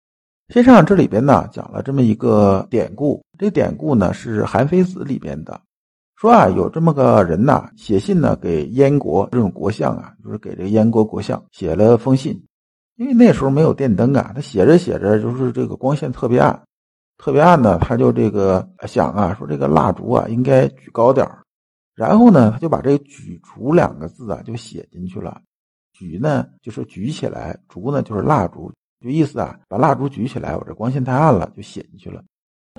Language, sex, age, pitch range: Chinese, male, 50-69, 115-165 Hz